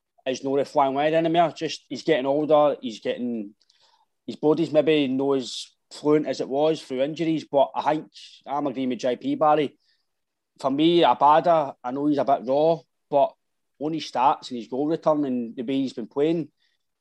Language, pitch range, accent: English, 135-160 Hz, British